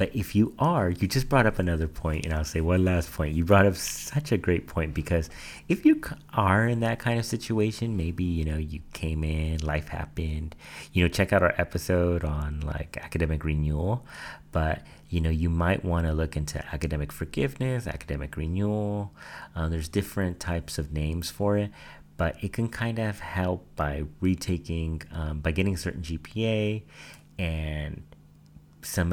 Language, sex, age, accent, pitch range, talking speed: English, male, 30-49, American, 75-95 Hz, 180 wpm